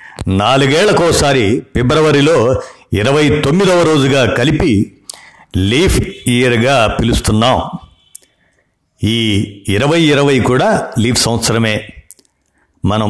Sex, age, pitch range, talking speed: male, 60-79, 105-140 Hz, 75 wpm